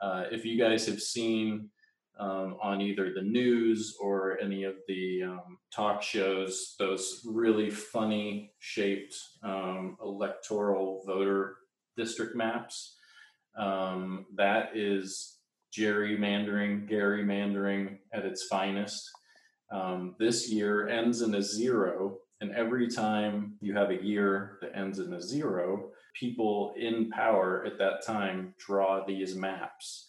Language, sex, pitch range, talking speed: English, male, 95-115 Hz, 125 wpm